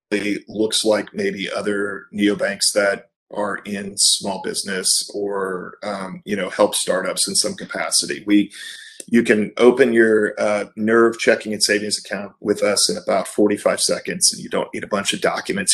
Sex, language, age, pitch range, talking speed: male, English, 40-59, 100-115 Hz, 170 wpm